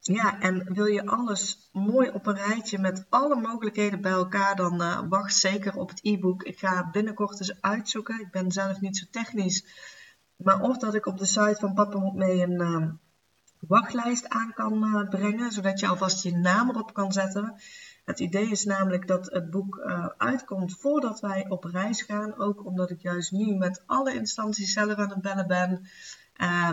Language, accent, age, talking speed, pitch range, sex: Dutch, Dutch, 30-49, 195 wpm, 180-215 Hz, female